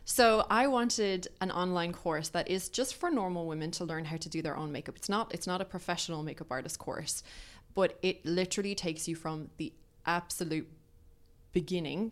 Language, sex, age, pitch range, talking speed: English, female, 20-39, 155-175 Hz, 190 wpm